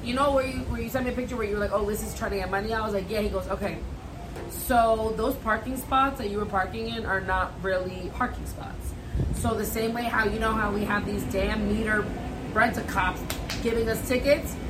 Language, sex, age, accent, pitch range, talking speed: English, female, 30-49, American, 200-250 Hz, 250 wpm